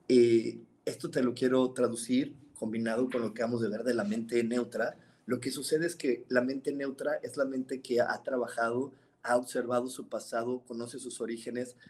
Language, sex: Spanish, male